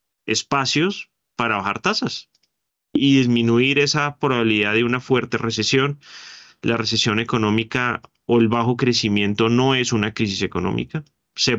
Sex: male